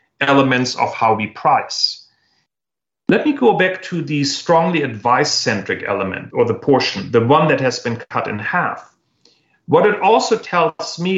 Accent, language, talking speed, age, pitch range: German, English, 160 wpm, 40-59, 140-190 Hz